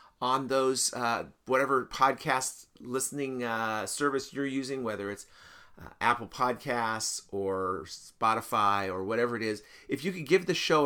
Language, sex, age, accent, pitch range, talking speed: English, male, 40-59, American, 115-140 Hz, 150 wpm